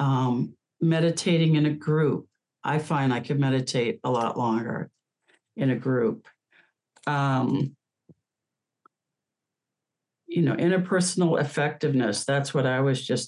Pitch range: 130-165 Hz